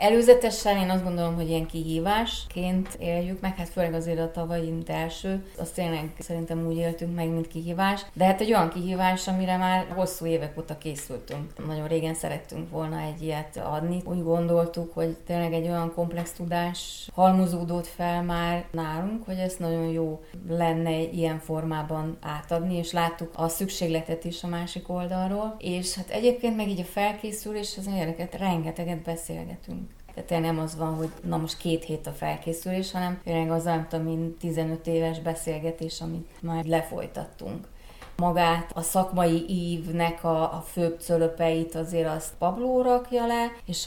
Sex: female